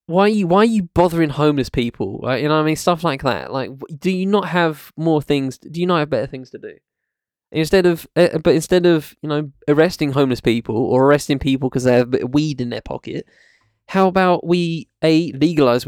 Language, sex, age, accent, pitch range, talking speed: English, male, 10-29, British, 130-165 Hz, 235 wpm